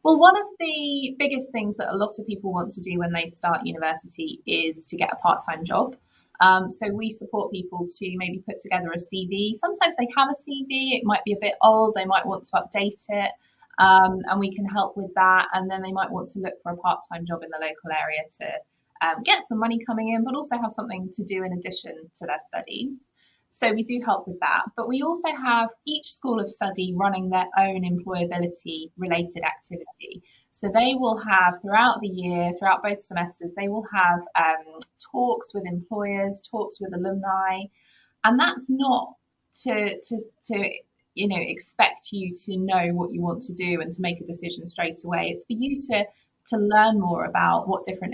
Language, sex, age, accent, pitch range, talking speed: English, female, 20-39, British, 175-225 Hz, 210 wpm